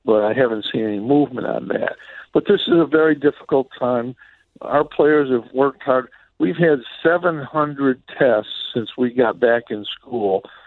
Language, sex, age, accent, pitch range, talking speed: English, male, 60-79, American, 115-135 Hz, 170 wpm